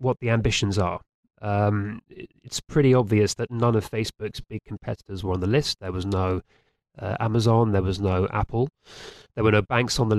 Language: English